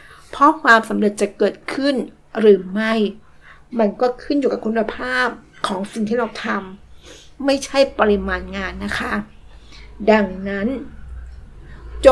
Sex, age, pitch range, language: female, 60-79, 205-240 Hz, Thai